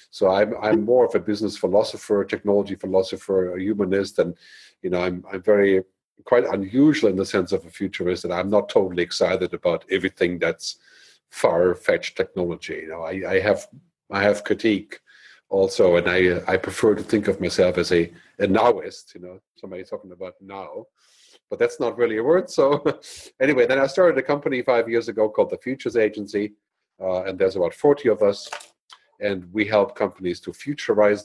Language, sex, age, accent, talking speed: English, male, 50-69, German, 185 wpm